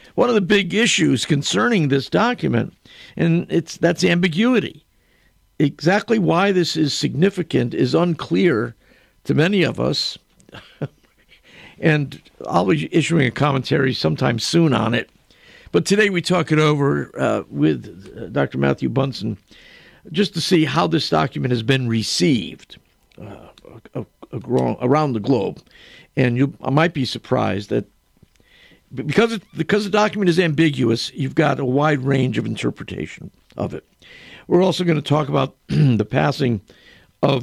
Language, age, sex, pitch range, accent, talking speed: English, 50-69, male, 130-170 Hz, American, 145 wpm